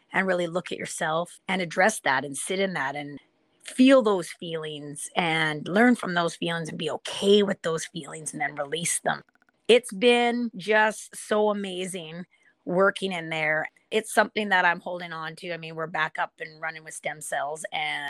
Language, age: English, 30-49